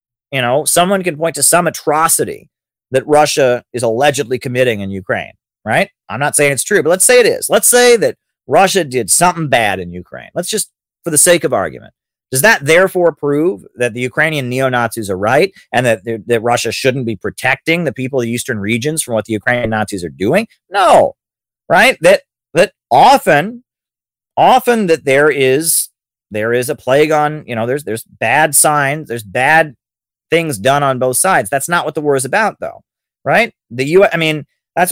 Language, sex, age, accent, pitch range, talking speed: English, male, 40-59, American, 120-165 Hz, 195 wpm